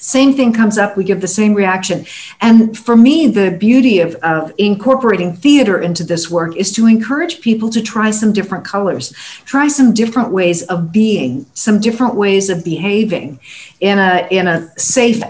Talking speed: 180 wpm